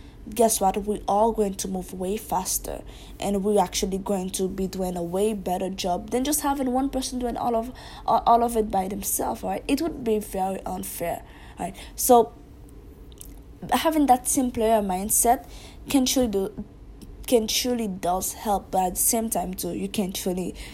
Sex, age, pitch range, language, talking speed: female, 20-39, 190-240 Hz, English, 180 wpm